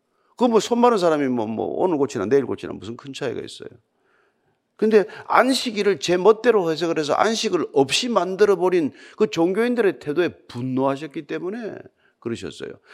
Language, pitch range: Korean, 175-250 Hz